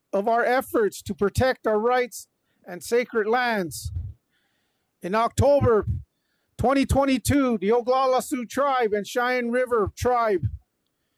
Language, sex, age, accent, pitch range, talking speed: English, male, 50-69, American, 210-260 Hz, 115 wpm